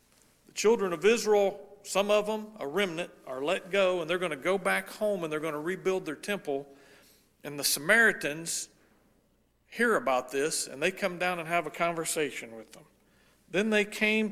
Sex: male